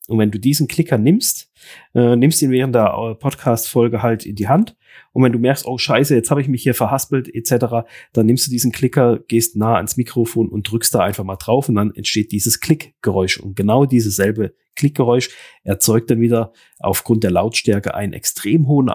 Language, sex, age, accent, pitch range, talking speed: German, male, 30-49, German, 110-135 Hz, 200 wpm